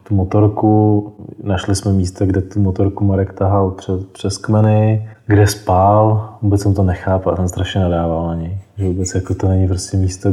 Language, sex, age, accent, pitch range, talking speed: Czech, male, 20-39, native, 95-105 Hz, 175 wpm